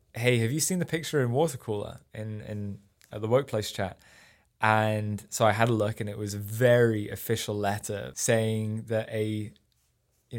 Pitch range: 105-120 Hz